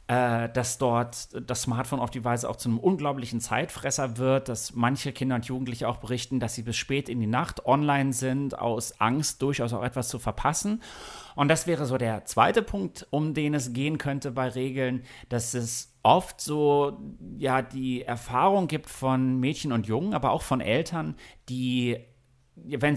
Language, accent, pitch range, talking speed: German, German, 120-145 Hz, 175 wpm